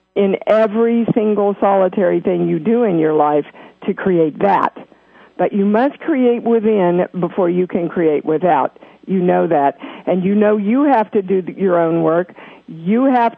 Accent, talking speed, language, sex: American, 170 wpm, English, female